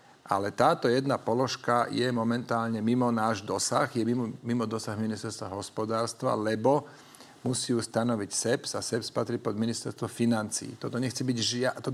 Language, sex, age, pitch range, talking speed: Slovak, male, 40-59, 115-130 Hz, 130 wpm